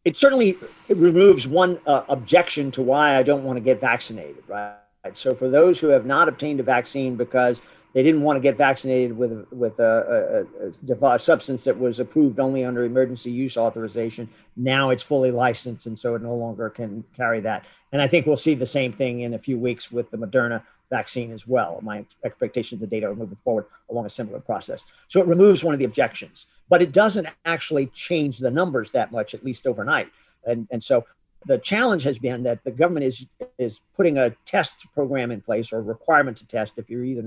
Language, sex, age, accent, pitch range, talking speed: English, male, 50-69, American, 120-160 Hz, 215 wpm